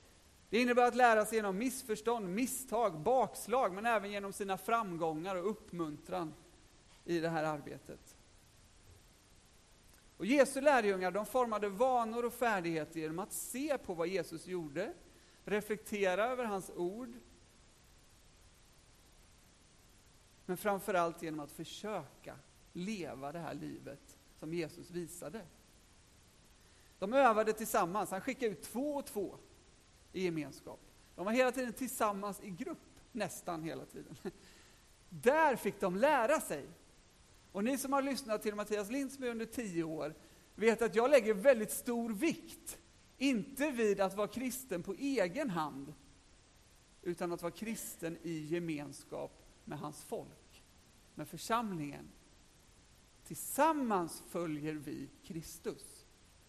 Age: 40-59